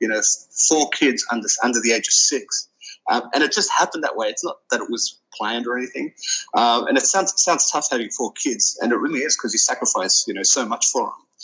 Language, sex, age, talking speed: English, male, 30-49, 250 wpm